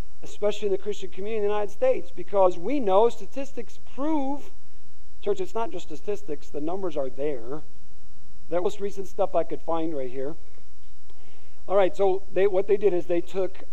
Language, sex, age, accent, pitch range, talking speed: English, male, 40-59, American, 150-230 Hz, 185 wpm